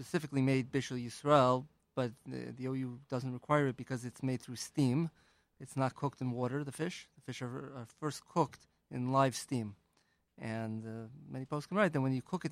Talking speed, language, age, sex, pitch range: 205 wpm, English, 30-49, male, 120-140 Hz